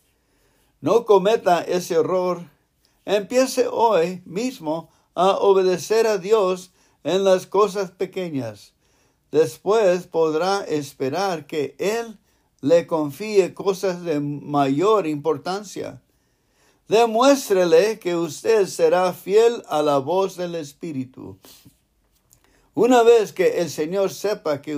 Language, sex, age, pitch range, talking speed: English, male, 60-79, 140-195 Hz, 105 wpm